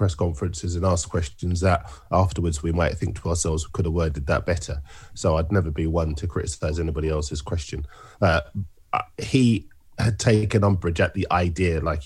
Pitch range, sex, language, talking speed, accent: 85-100 Hz, male, English, 185 wpm, British